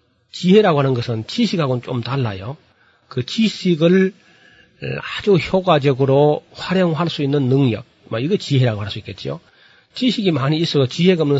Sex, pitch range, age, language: male, 120-160 Hz, 40-59, Korean